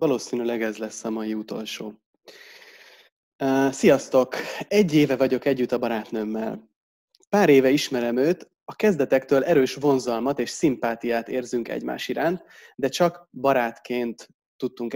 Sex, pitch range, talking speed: male, 120-165 Hz, 120 wpm